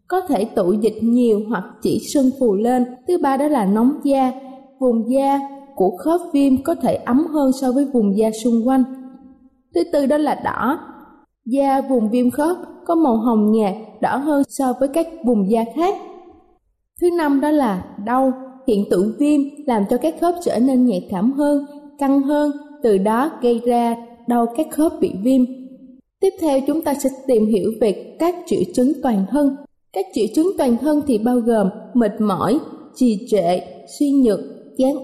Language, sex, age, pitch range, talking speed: Vietnamese, female, 20-39, 235-295 Hz, 185 wpm